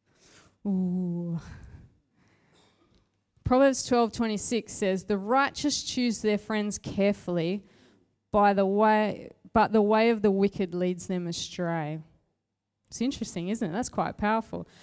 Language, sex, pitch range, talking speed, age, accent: English, female, 160-225 Hz, 120 wpm, 20-39, Australian